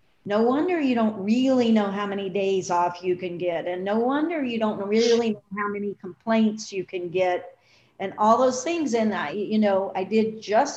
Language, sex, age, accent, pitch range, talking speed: English, female, 50-69, American, 205-260 Hz, 205 wpm